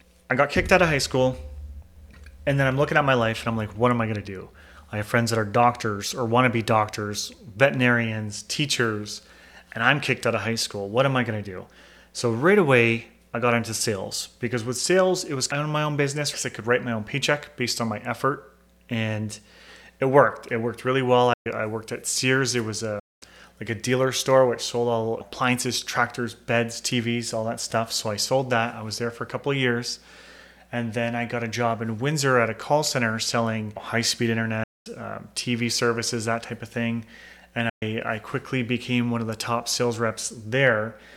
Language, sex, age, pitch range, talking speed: English, male, 30-49, 115-130 Hz, 225 wpm